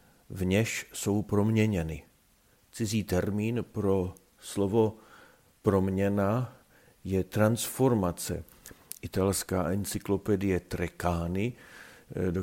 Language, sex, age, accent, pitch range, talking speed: Czech, male, 50-69, native, 95-115 Hz, 70 wpm